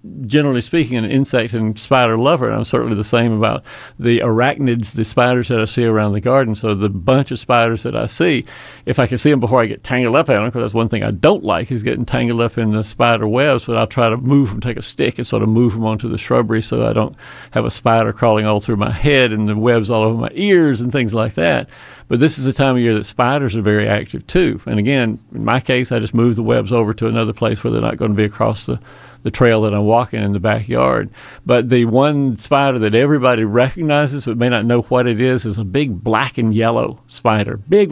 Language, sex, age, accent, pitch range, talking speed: English, male, 50-69, American, 110-130 Hz, 255 wpm